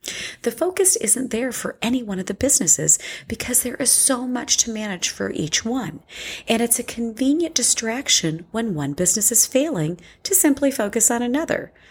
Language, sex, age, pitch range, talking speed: English, female, 40-59, 145-240 Hz, 175 wpm